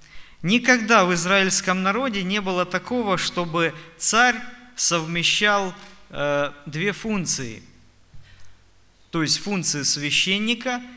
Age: 20-39